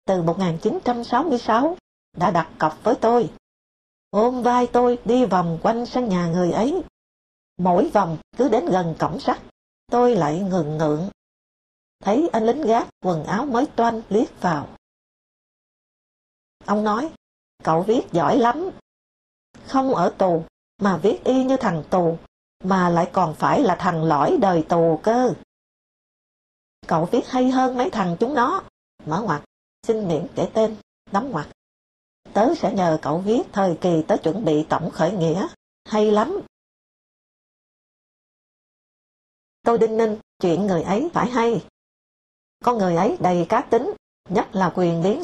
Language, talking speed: English, 150 wpm